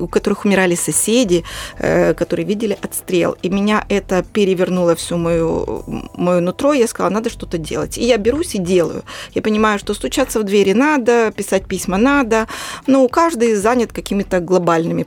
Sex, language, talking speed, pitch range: female, Russian, 165 wpm, 180-230 Hz